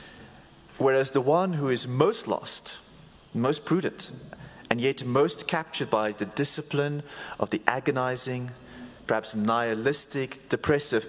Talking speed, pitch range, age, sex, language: 120 wpm, 105-135 Hz, 30-49, male, English